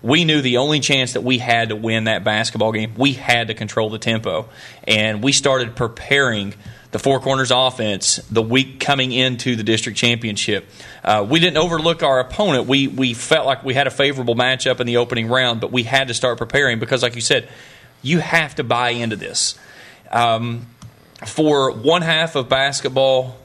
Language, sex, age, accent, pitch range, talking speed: English, male, 30-49, American, 115-135 Hz, 190 wpm